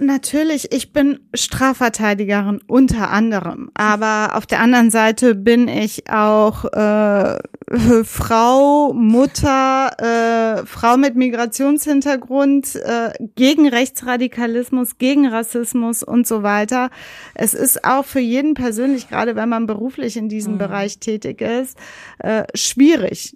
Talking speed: 120 wpm